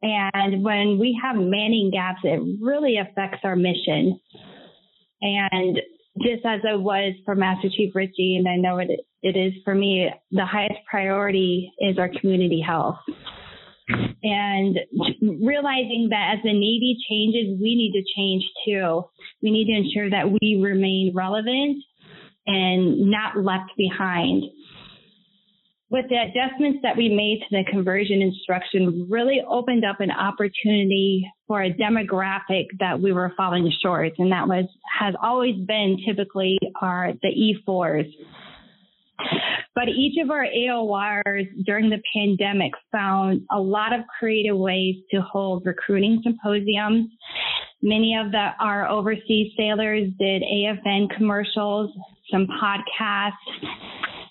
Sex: female